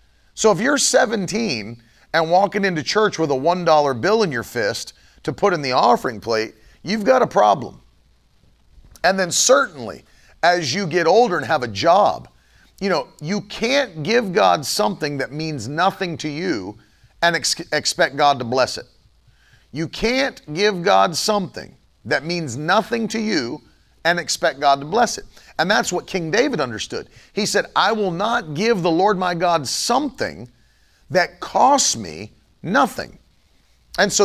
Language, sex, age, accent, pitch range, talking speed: English, male, 40-59, American, 140-210 Hz, 165 wpm